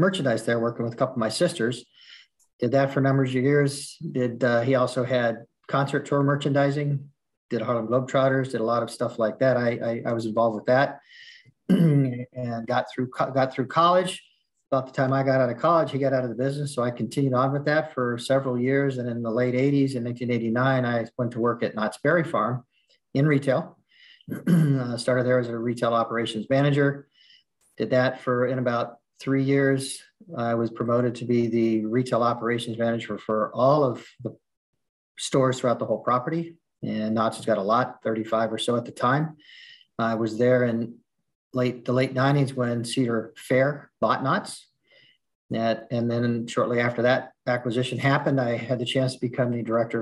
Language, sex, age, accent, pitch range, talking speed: English, male, 40-59, American, 115-135 Hz, 190 wpm